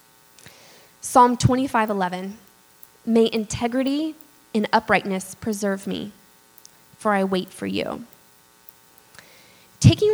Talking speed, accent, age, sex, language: 85 wpm, American, 10-29, female, English